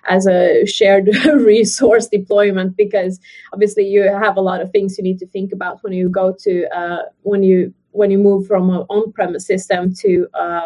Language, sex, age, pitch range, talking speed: English, female, 20-39, 190-225 Hz, 190 wpm